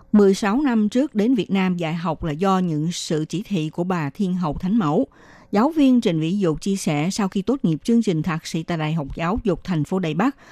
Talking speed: 250 wpm